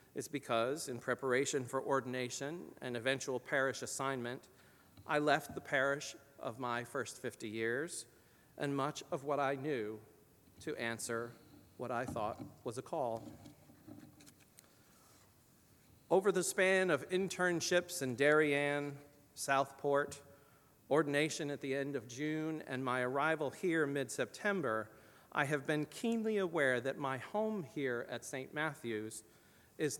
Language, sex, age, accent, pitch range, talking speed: English, male, 40-59, American, 125-150 Hz, 130 wpm